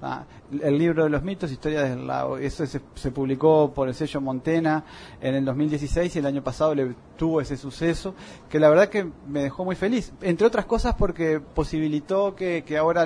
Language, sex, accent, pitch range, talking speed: Spanish, male, Argentinian, 135-165 Hz, 200 wpm